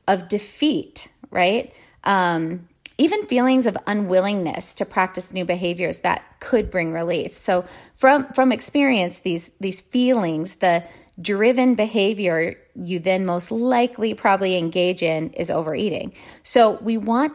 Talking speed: 130 wpm